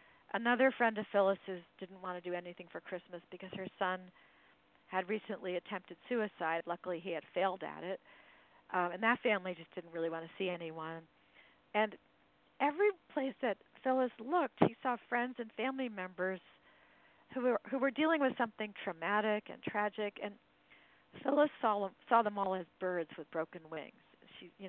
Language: English